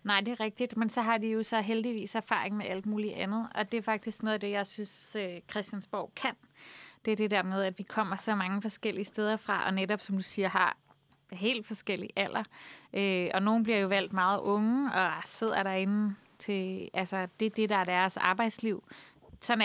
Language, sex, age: Danish, female, 30-49